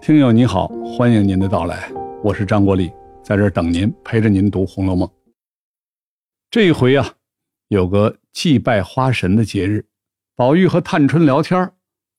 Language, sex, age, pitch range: Chinese, male, 60-79, 100-135 Hz